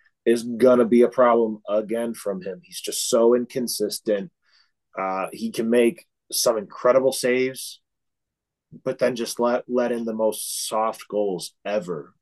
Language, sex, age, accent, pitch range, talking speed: English, male, 30-49, American, 105-130 Hz, 150 wpm